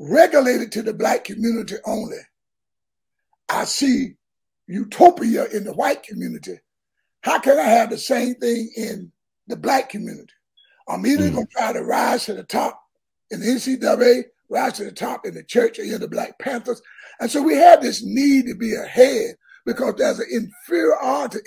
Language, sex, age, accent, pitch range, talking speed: English, male, 60-79, American, 230-325 Hz, 170 wpm